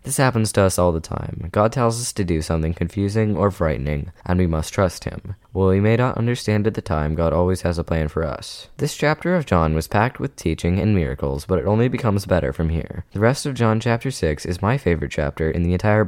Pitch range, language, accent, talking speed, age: 80-105 Hz, English, American, 245 wpm, 20-39